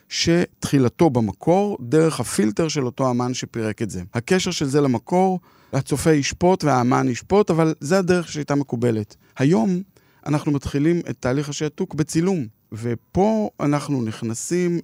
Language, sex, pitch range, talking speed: Hebrew, male, 120-160 Hz, 135 wpm